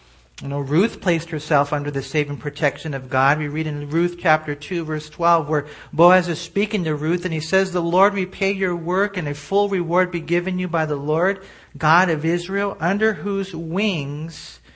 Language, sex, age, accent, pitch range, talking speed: English, male, 40-59, American, 125-180 Hz, 200 wpm